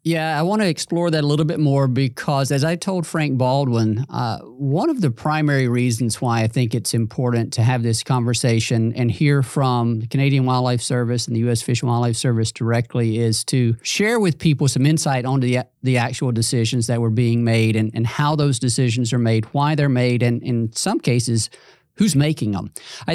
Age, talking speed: 40-59, 210 wpm